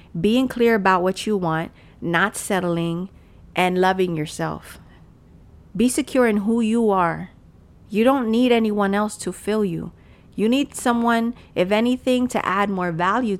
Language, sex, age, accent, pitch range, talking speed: English, female, 40-59, American, 170-220 Hz, 150 wpm